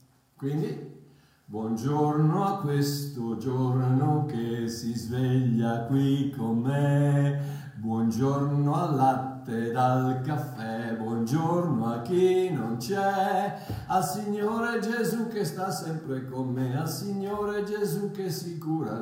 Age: 50-69